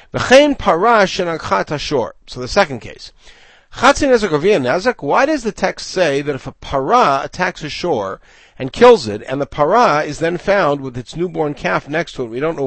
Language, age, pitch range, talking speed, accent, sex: English, 50-69, 130-195 Hz, 165 wpm, American, male